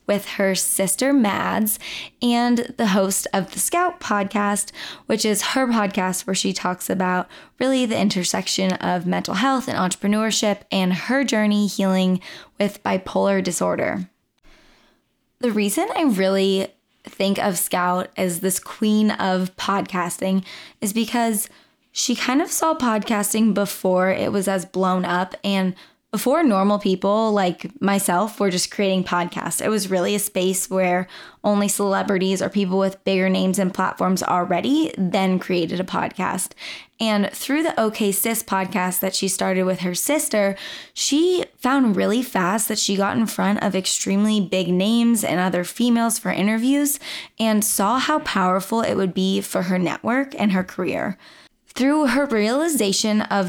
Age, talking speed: 20-39, 155 wpm